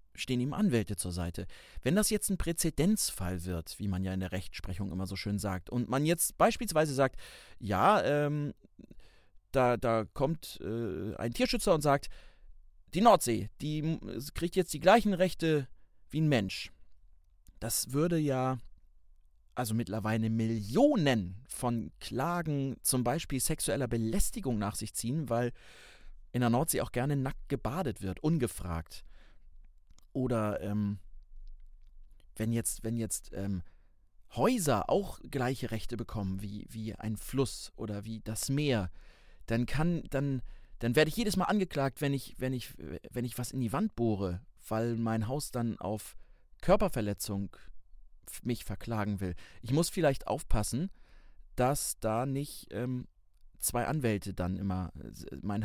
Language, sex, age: German, male, 30-49